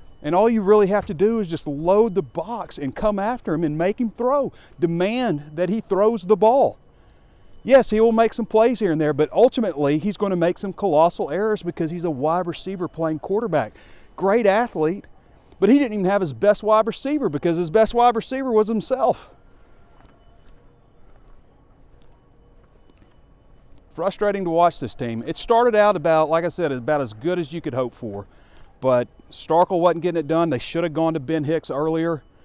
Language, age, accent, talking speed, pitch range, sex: English, 40-59, American, 190 wpm, 135-195 Hz, male